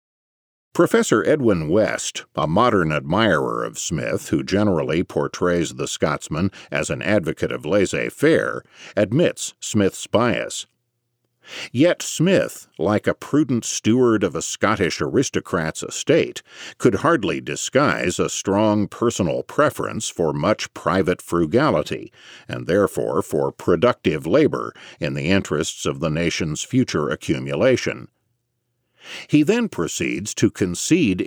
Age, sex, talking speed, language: 50-69, male, 115 wpm, English